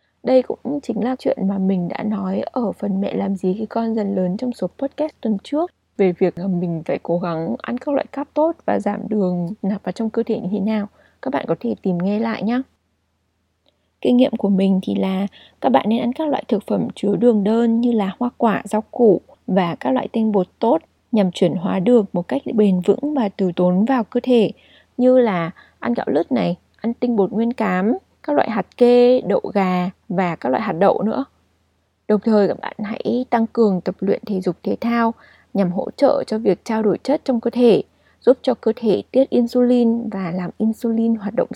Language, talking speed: Vietnamese, 220 wpm